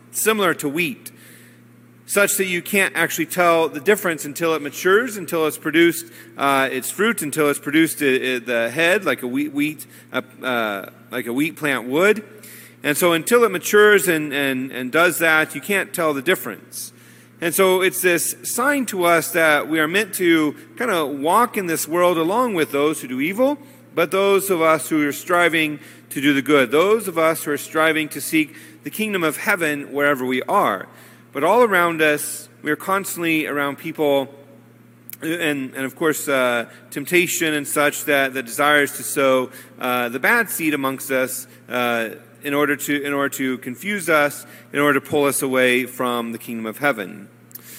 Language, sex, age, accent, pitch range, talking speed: English, male, 40-59, American, 135-170 Hz, 185 wpm